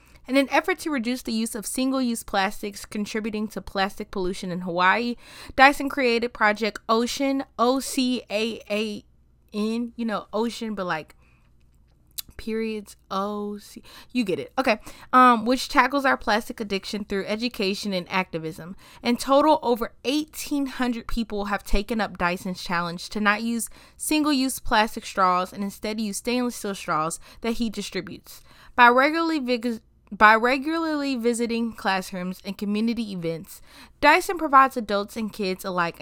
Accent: American